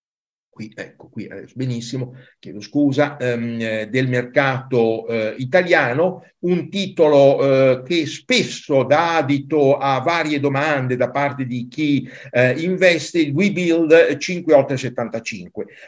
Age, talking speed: 50-69, 120 wpm